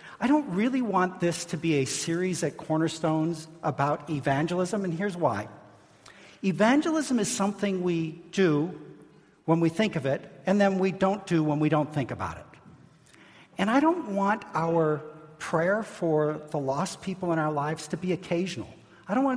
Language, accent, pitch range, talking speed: English, American, 145-195 Hz, 175 wpm